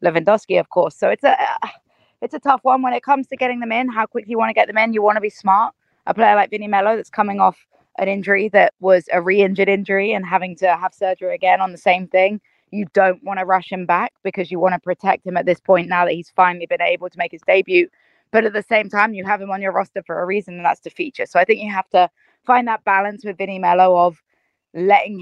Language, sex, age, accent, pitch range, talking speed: English, female, 20-39, British, 180-210 Hz, 270 wpm